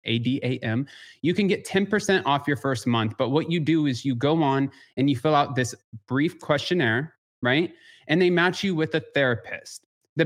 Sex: male